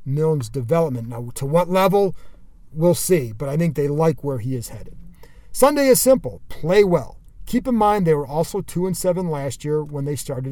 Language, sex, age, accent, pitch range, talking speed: English, male, 40-59, American, 140-185 Hz, 205 wpm